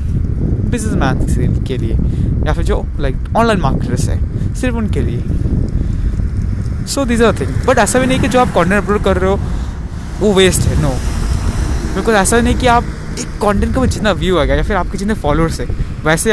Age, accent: 20-39, native